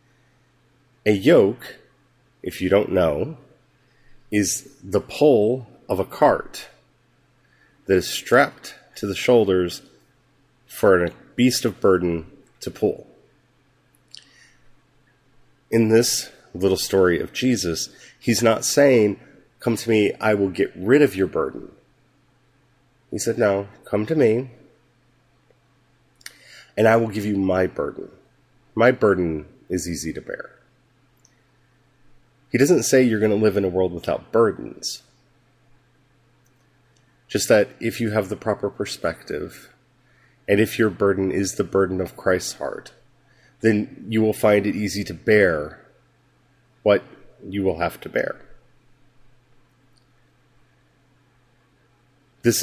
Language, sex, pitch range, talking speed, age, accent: English, male, 100-125 Hz, 125 wpm, 30-49, American